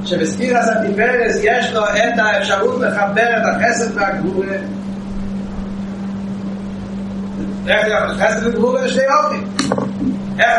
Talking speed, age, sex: 95 wpm, 30-49, male